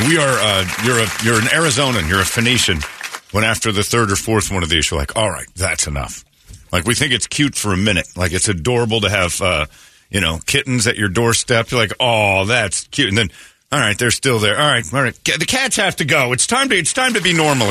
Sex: male